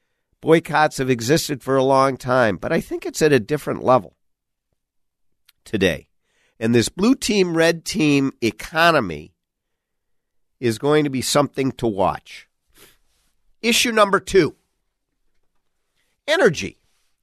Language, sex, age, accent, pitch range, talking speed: English, male, 50-69, American, 110-165 Hz, 120 wpm